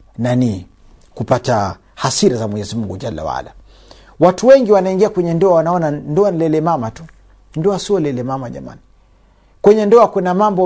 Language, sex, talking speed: Swahili, male, 160 wpm